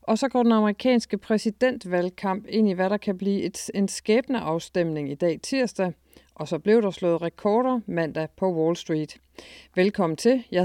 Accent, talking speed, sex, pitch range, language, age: native, 175 wpm, female, 165-220 Hz, Danish, 40-59